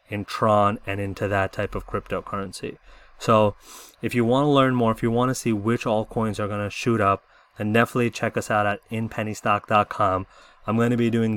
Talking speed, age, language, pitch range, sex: 210 wpm, 20-39, English, 100-115 Hz, male